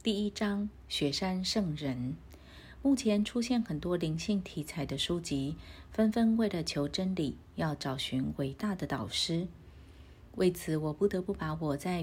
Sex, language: female, Chinese